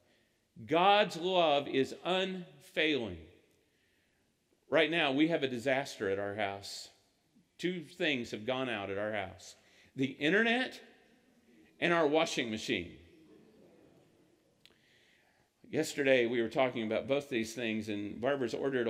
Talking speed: 120 wpm